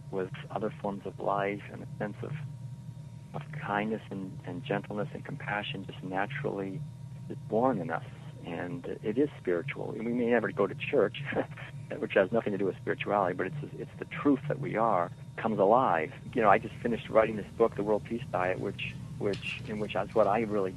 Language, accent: English, American